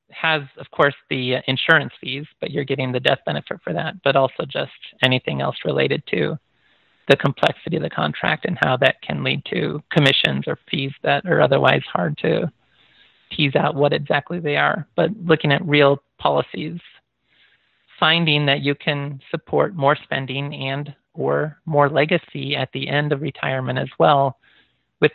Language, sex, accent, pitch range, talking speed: English, male, American, 135-160 Hz, 165 wpm